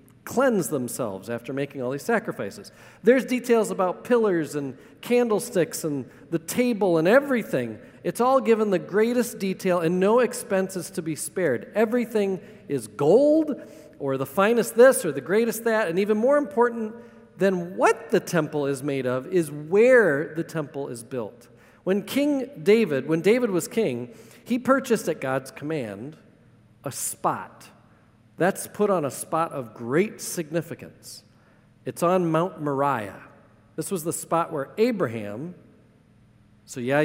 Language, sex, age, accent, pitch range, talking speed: English, male, 40-59, American, 145-205 Hz, 150 wpm